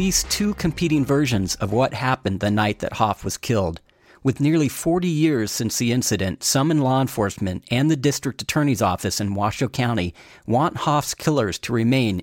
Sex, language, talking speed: male, English, 175 wpm